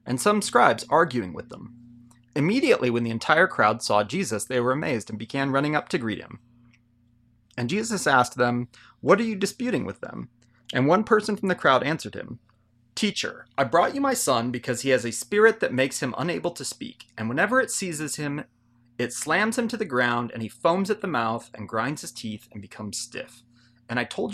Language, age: English, 30-49